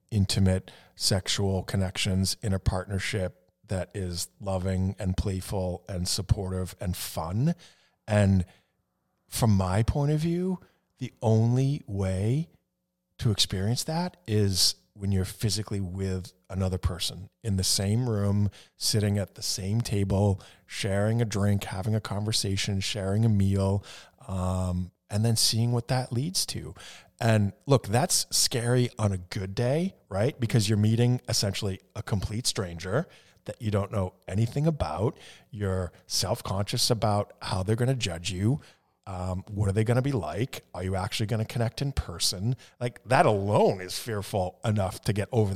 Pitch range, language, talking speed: 95-115 Hz, English, 155 wpm